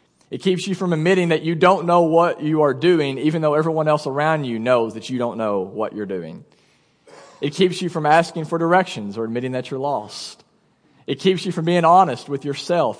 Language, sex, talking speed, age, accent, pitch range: English, male, 215 wpm, 40-59, American, 140-180 Hz